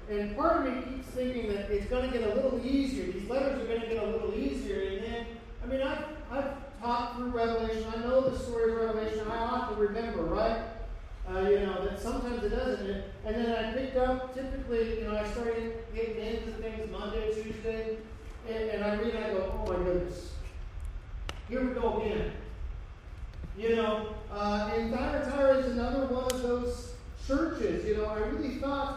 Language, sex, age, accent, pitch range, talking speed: English, male, 40-59, American, 205-240 Hz, 195 wpm